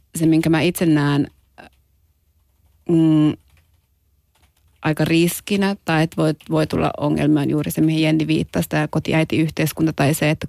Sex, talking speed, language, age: female, 145 wpm, Finnish, 30-49